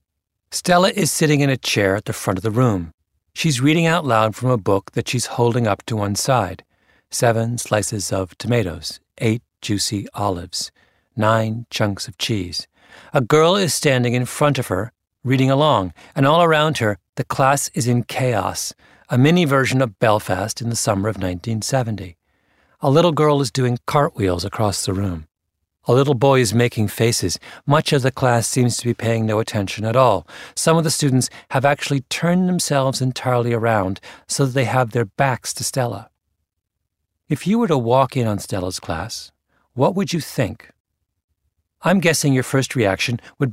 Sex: male